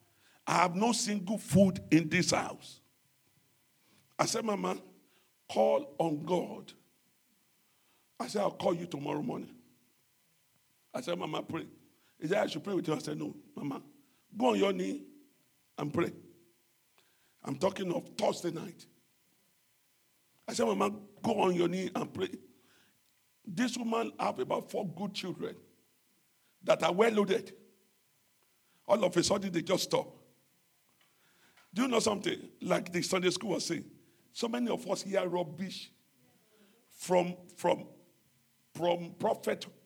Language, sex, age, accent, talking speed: English, male, 50-69, Nigerian, 140 wpm